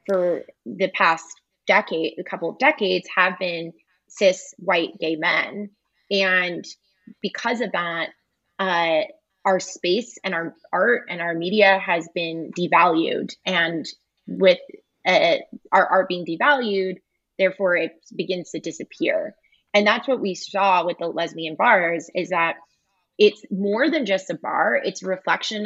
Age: 20-39